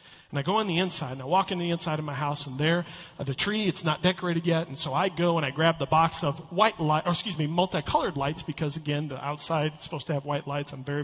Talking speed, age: 275 wpm, 40-59